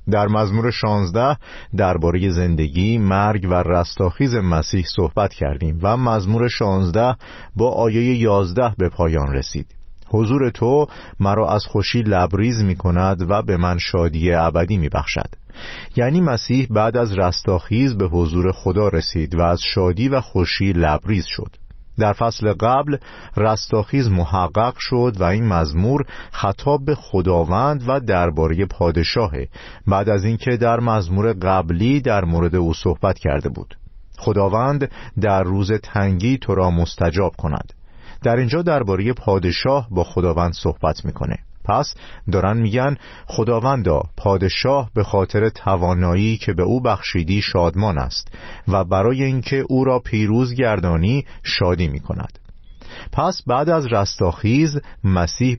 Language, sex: Persian, male